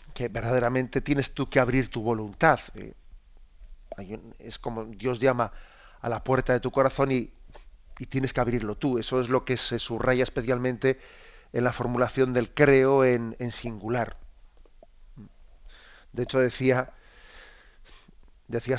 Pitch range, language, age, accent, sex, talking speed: 115-135 Hz, Spanish, 40-59, Spanish, male, 135 wpm